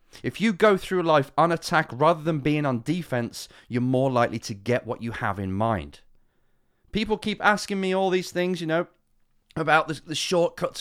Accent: British